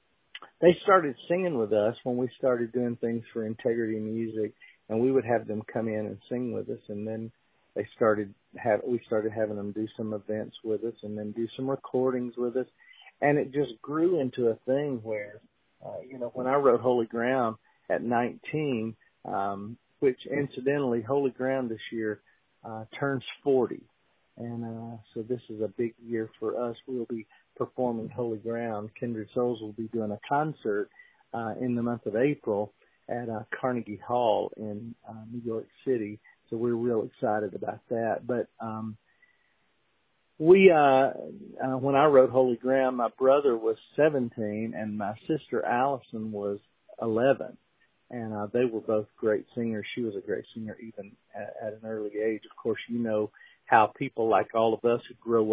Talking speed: 180 wpm